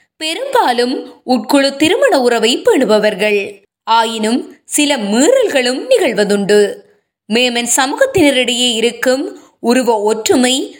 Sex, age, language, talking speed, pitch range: female, 20-39, Tamil, 80 wpm, 225-305 Hz